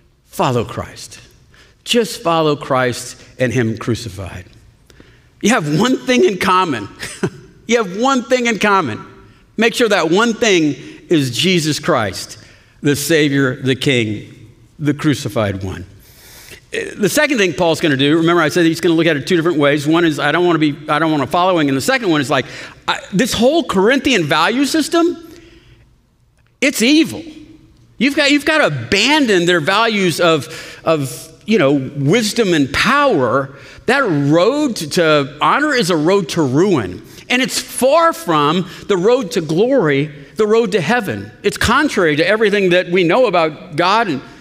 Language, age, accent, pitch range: English, 50-69, American, 145-230 Hz